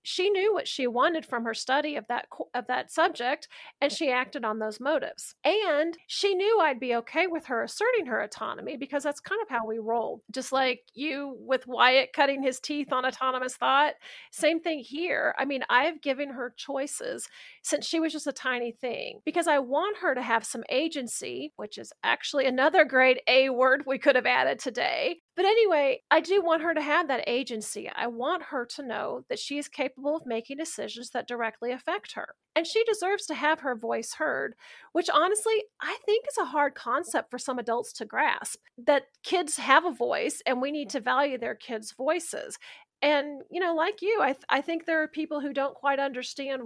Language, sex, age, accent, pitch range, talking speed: English, female, 40-59, American, 255-330 Hz, 205 wpm